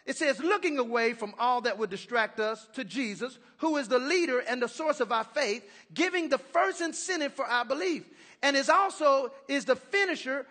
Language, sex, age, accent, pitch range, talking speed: English, male, 40-59, American, 255-345 Hz, 200 wpm